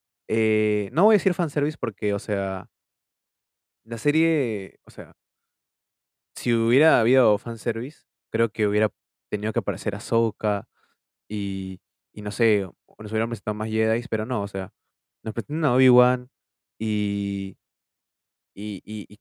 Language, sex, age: Spanish, male, 20-39